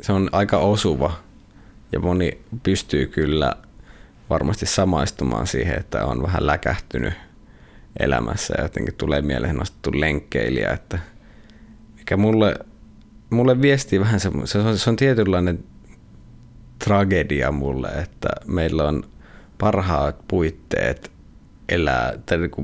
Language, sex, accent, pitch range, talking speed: Finnish, male, native, 80-105 Hz, 110 wpm